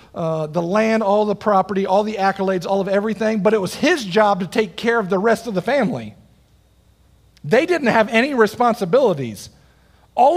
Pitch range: 170-220 Hz